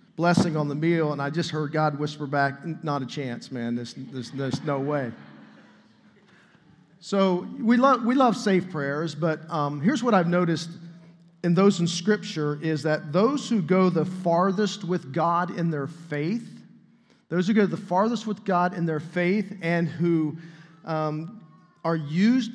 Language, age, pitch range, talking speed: English, 40-59, 155-195 Hz, 170 wpm